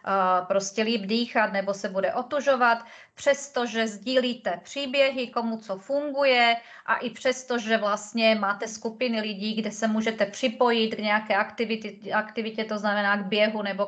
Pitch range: 210-240 Hz